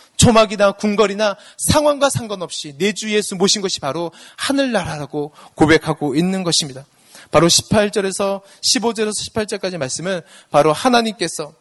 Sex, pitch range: male, 140-200 Hz